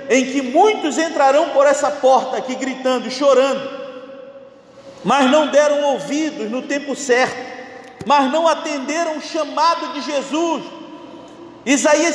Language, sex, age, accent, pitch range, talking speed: Portuguese, male, 40-59, Brazilian, 260-310 Hz, 130 wpm